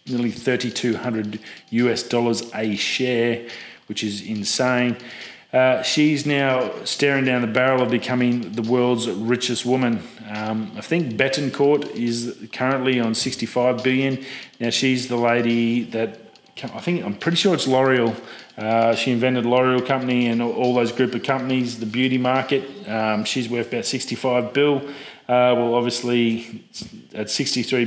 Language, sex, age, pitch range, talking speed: English, male, 30-49, 115-125 Hz, 150 wpm